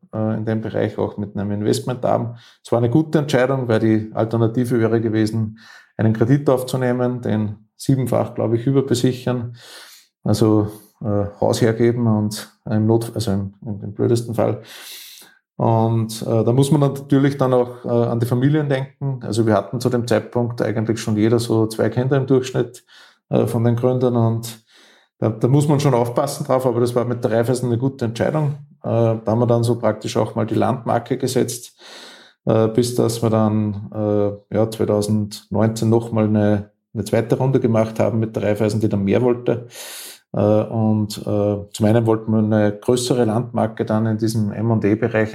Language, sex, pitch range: German, male, 105-120 Hz